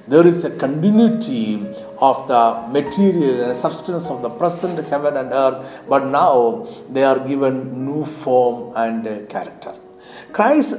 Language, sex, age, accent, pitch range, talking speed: Malayalam, male, 60-79, native, 135-195 Hz, 140 wpm